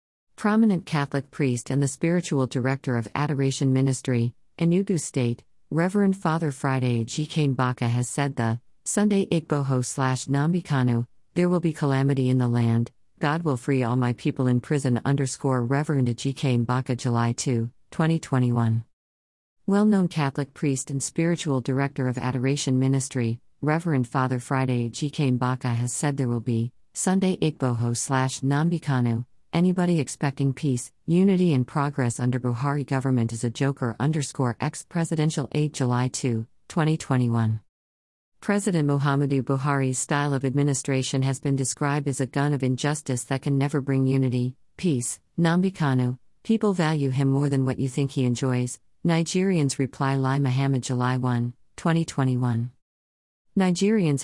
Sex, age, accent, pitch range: female, 50-69, American, 125-150 Hz